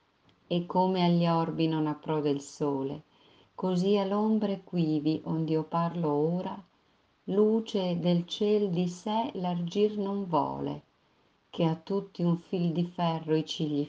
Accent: native